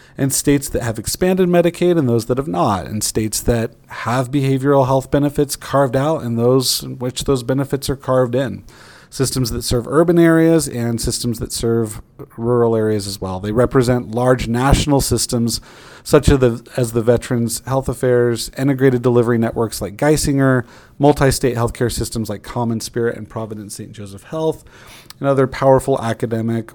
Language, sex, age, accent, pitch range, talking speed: English, male, 30-49, American, 110-130 Hz, 165 wpm